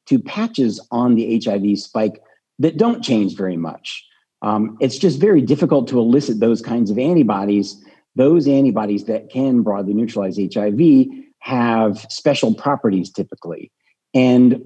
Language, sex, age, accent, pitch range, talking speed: English, male, 50-69, American, 110-150 Hz, 140 wpm